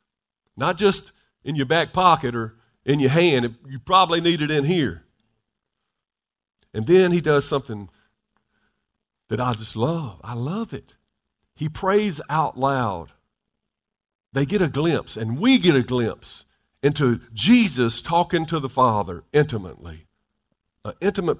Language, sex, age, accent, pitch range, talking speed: English, male, 50-69, American, 130-195 Hz, 135 wpm